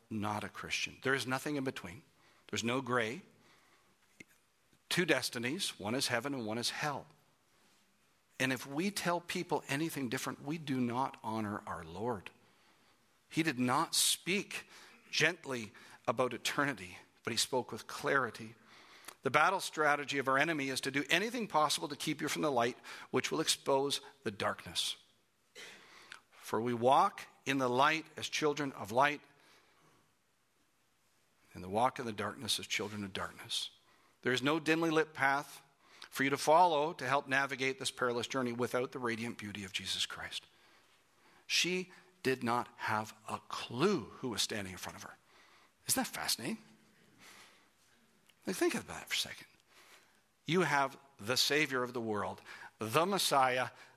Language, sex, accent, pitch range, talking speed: English, male, American, 115-145 Hz, 155 wpm